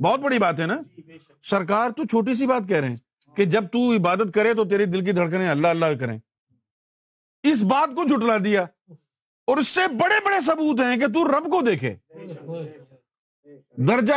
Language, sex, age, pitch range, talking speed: Urdu, male, 50-69, 145-220 Hz, 185 wpm